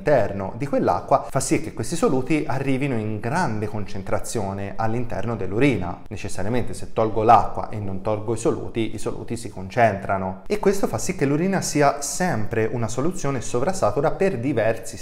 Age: 20-39